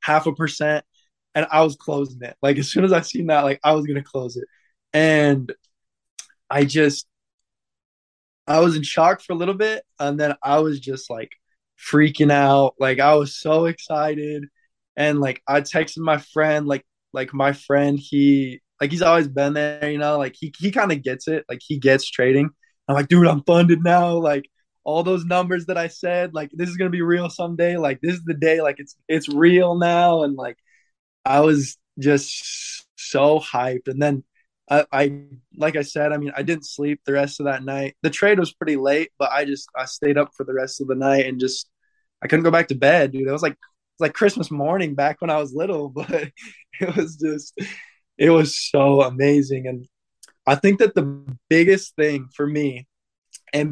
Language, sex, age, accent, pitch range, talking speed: English, male, 20-39, American, 140-160 Hz, 205 wpm